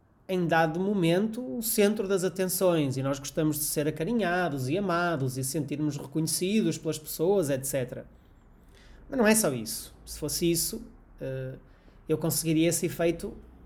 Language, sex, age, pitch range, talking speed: Portuguese, male, 30-49, 140-195 Hz, 145 wpm